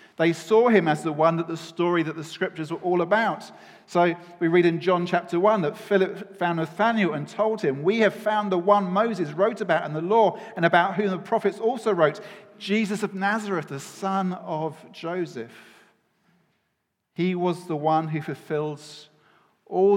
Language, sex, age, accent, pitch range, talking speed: English, male, 40-59, British, 150-195 Hz, 185 wpm